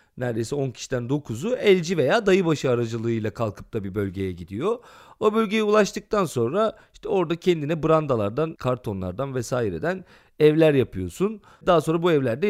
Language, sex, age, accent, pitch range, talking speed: Turkish, male, 40-59, native, 125-190 Hz, 140 wpm